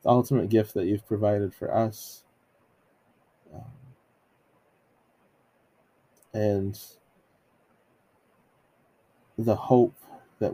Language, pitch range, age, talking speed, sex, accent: English, 95-125 Hz, 20-39, 75 wpm, male, American